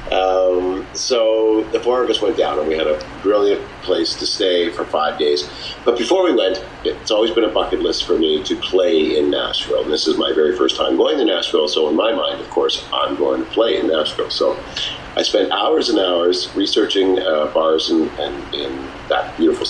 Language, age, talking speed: English, 50-69, 215 wpm